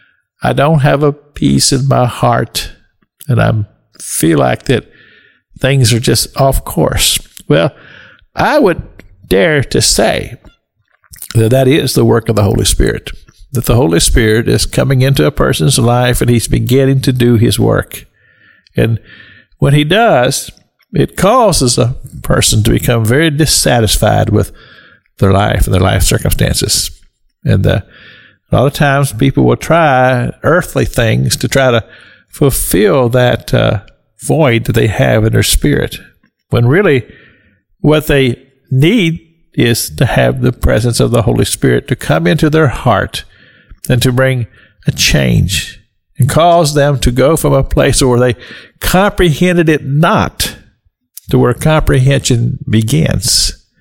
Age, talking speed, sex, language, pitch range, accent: 50-69, 150 wpm, male, English, 110-140 Hz, American